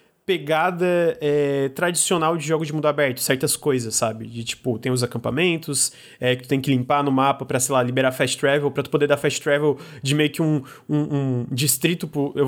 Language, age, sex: Portuguese, 20-39, male